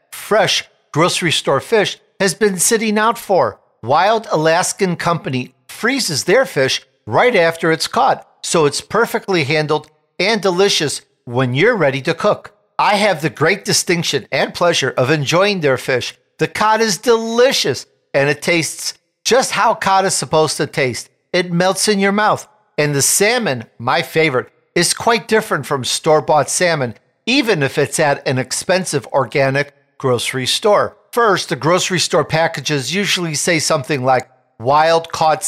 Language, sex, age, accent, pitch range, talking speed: English, male, 50-69, American, 145-200 Hz, 155 wpm